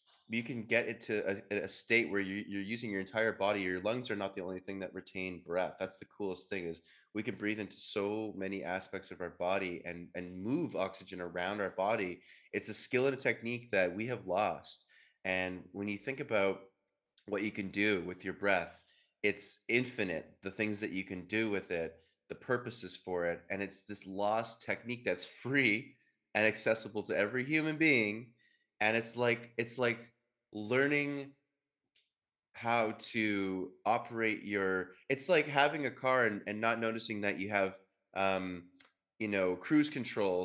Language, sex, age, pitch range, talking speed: English, male, 20-39, 95-115 Hz, 180 wpm